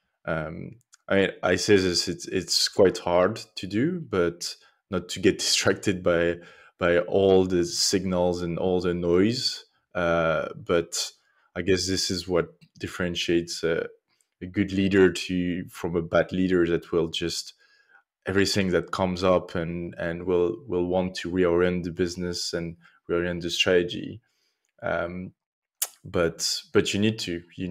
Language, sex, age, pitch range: English, male, 20-39, 85-95 Hz